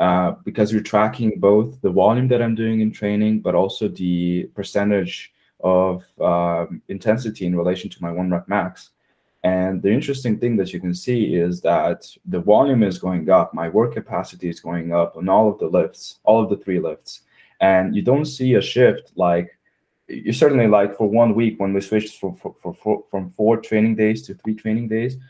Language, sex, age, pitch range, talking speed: English, male, 20-39, 95-110 Hz, 195 wpm